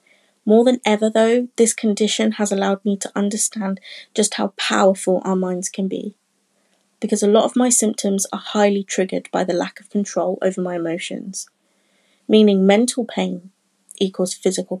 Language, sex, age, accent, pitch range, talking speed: English, female, 30-49, British, 185-215 Hz, 160 wpm